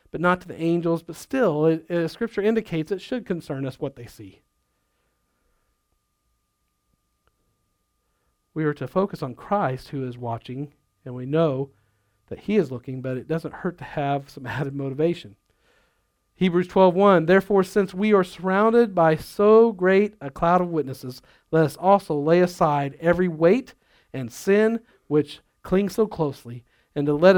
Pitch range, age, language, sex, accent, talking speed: 135-180 Hz, 50-69, English, male, American, 160 wpm